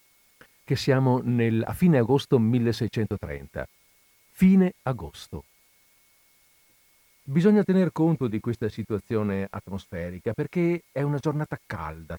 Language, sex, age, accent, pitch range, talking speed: Italian, male, 50-69, native, 105-150 Hz, 100 wpm